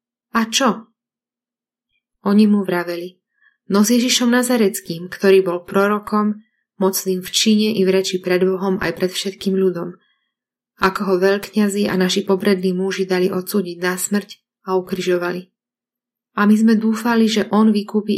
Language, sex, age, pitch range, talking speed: Slovak, female, 20-39, 190-220 Hz, 145 wpm